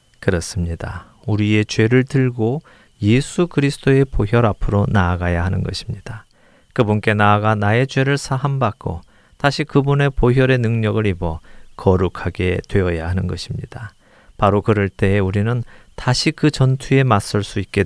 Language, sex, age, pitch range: Korean, male, 40-59, 90-125 Hz